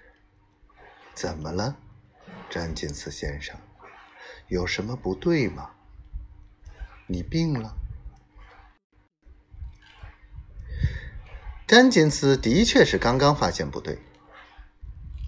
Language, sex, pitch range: Chinese, male, 75-110 Hz